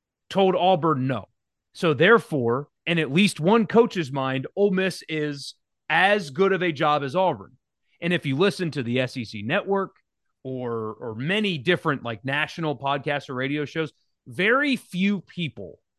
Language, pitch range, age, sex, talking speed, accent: English, 135-185 Hz, 30-49, male, 160 wpm, American